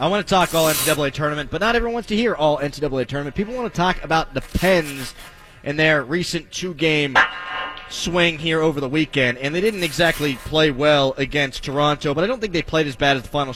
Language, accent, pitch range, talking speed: English, American, 140-180 Hz, 225 wpm